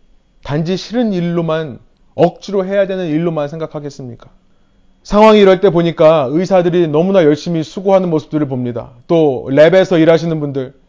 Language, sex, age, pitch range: Korean, male, 30-49, 145-195 Hz